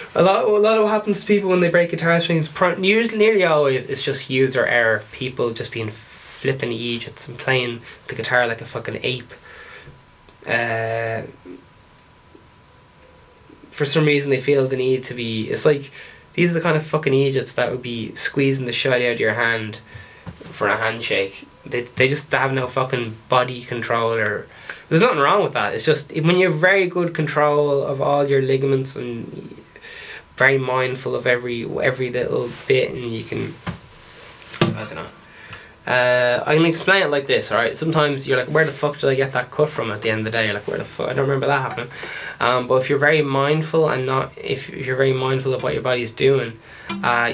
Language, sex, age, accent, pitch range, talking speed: English, male, 10-29, Irish, 115-145 Hz, 205 wpm